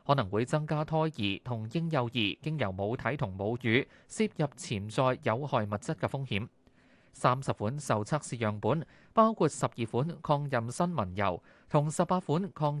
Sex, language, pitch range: male, Chinese, 110-155 Hz